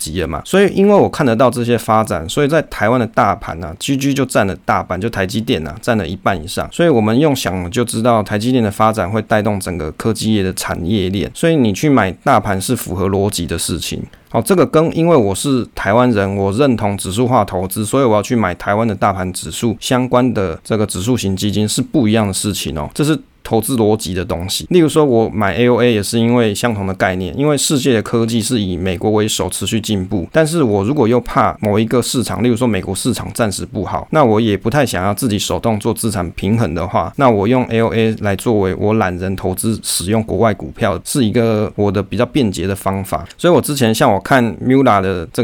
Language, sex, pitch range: Chinese, male, 95-120 Hz